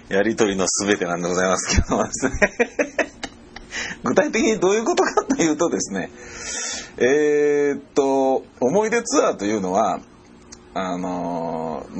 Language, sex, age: Japanese, male, 40-59